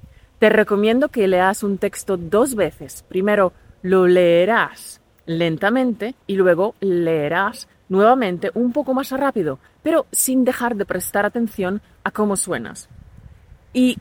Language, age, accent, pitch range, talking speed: Spanish, 30-49, Spanish, 185-230 Hz, 130 wpm